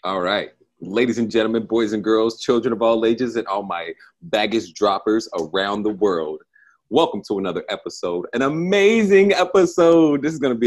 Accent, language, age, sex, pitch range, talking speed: American, English, 30-49, male, 95-120 Hz, 175 wpm